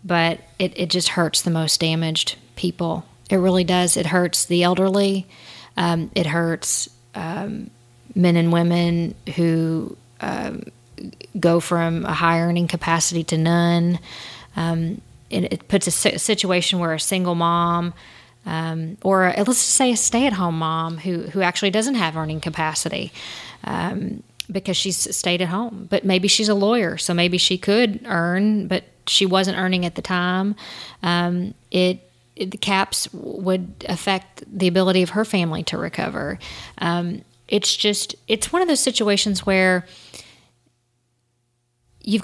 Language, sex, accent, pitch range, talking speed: English, female, American, 165-195 Hz, 150 wpm